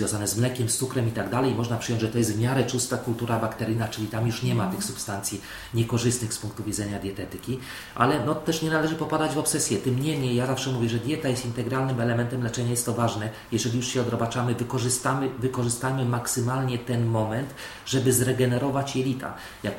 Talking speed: 205 wpm